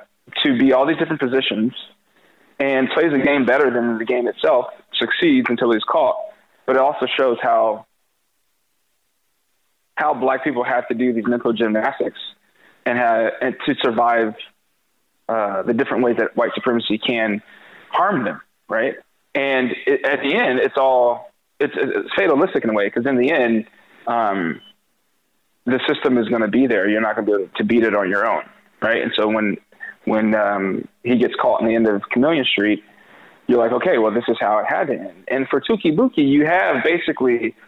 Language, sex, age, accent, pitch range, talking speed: English, male, 20-39, American, 115-140 Hz, 190 wpm